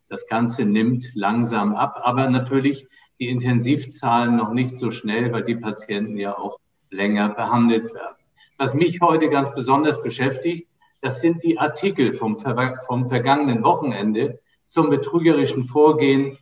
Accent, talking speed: German, 140 wpm